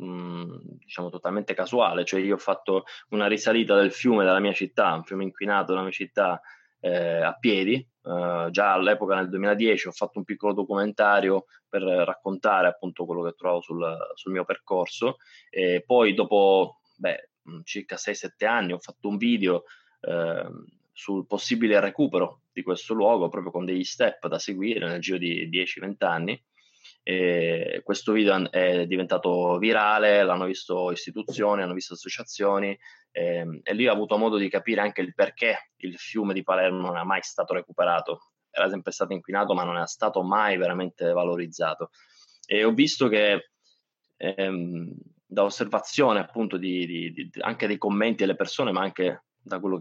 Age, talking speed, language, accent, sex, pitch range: 20-39, 160 wpm, Italian, native, male, 90-100 Hz